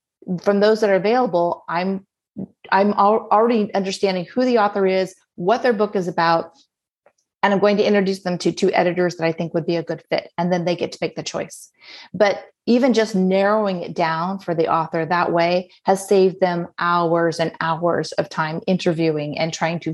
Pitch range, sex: 170-205 Hz, female